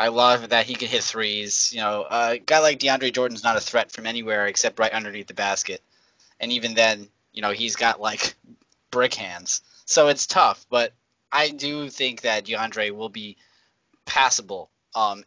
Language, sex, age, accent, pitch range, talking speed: English, male, 20-39, American, 115-145 Hz, 185 wpm